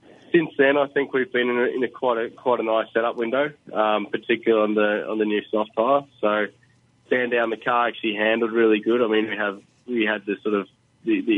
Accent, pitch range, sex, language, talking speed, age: Australian, 105-120 Hz, male, English, 230 wpm, 20-39